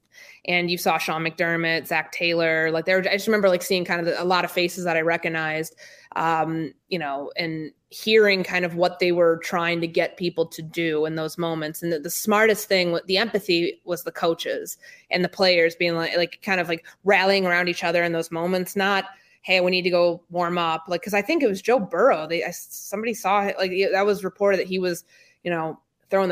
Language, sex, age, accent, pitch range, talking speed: English, female, 20-39, American, 170-205 Hz, 230 wpm